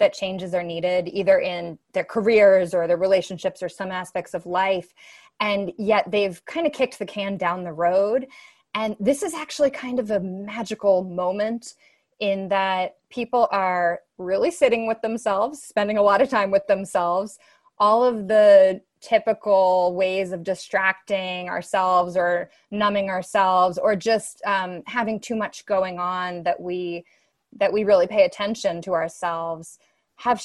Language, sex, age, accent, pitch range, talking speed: English, female, 20-39, American, 185-230 Hz, 155 wpm